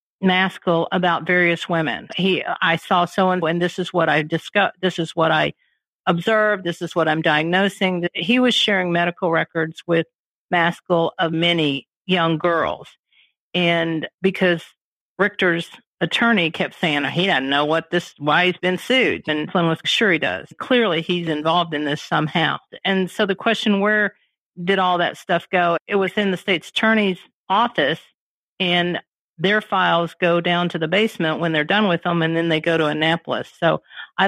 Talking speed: 185 wpm